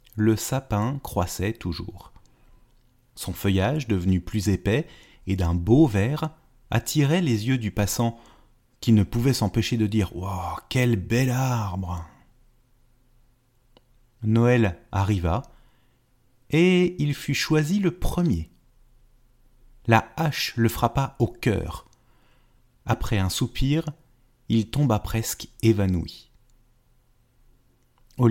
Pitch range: 105-125 Hz